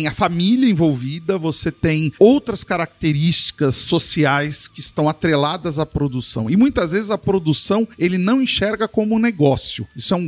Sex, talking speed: male, 160 wpm